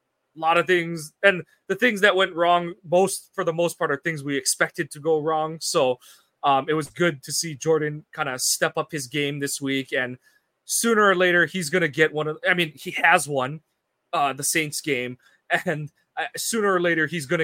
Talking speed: 220 wpm